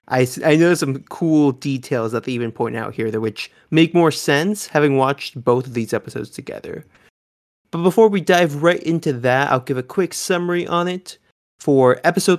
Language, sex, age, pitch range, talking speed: English, male, 20-39, 130-180 Hz, 190 wpm